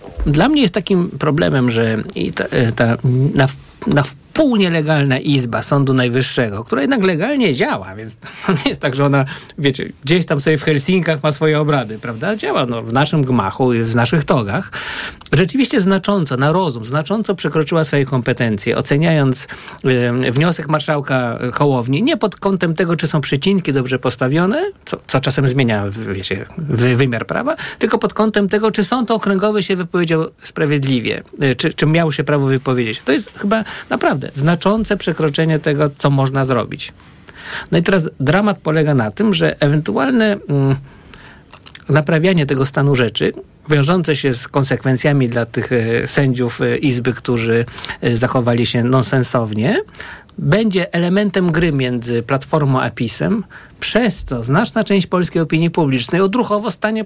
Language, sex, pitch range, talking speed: Polish, male, 130-185 Hz, 150 wpm